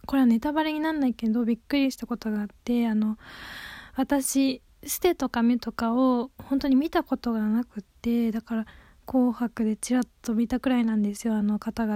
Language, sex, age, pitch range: Japanese, female, 20-39, 230-295 Hz